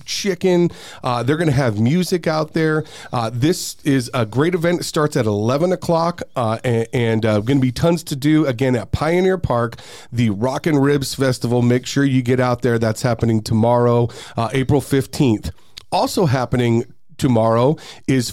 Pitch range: 120-150 Hz